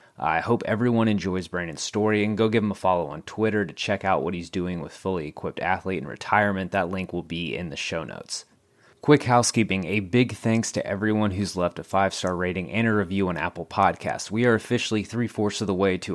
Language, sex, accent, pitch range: English, male, American, 90-110 Hz